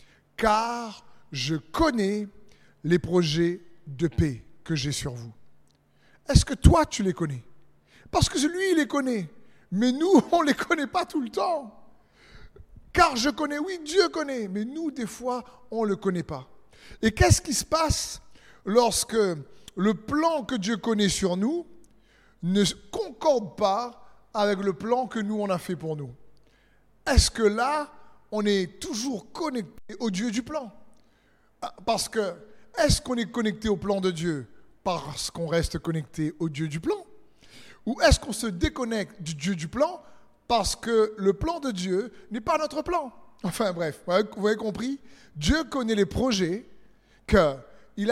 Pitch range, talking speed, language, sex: 175-255 Hz, 170 wpm, French, male